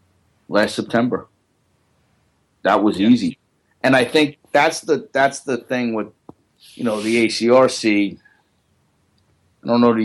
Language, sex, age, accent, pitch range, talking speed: English, male, 30-49, American, 95-115 Hz, 130 wpm